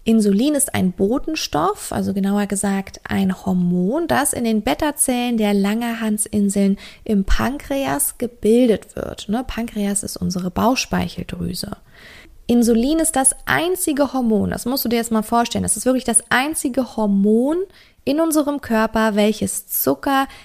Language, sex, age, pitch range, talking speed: German, female, 20-39, 200-255 Hz, 135 wpm